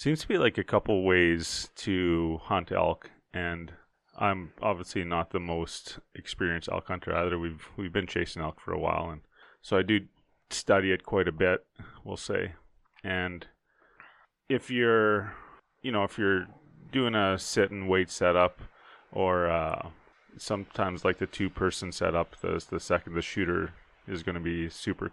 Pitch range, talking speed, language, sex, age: 85-95 Hz, 165 wpm, English, male, 30-49